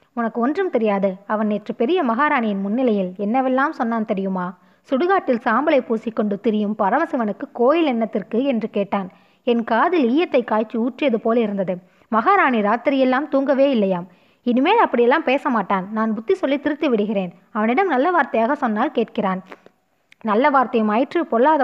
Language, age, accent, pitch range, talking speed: Tamil, 20-39, native, 215-275 Hz, 135 wpm